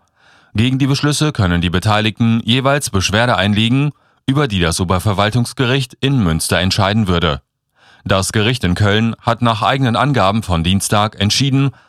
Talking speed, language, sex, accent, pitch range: 140 wpm, German, male, German, 95-125 Hz